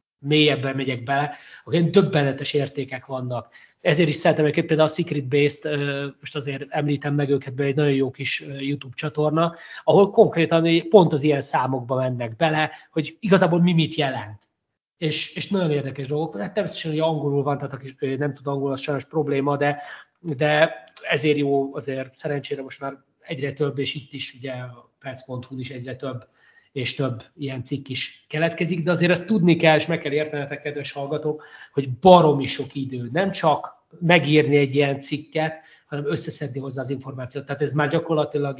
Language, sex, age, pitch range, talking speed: Hungarian, male, 30-49, 135-155 Hz, 175 wpm